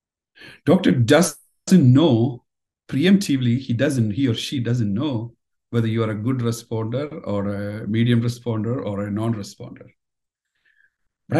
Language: English